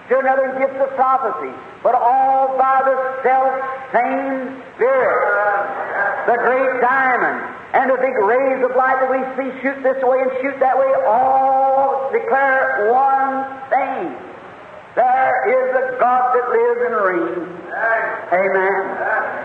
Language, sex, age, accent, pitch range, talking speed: English, male, 50-69, American, 250-270 Hz, 130 wpm